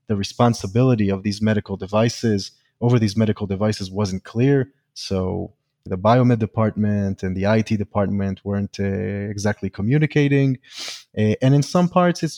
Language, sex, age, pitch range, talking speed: English, male, 30-49, 100-135 Hz, 140 wpm